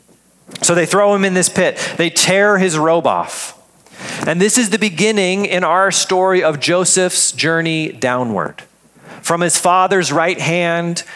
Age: 40-59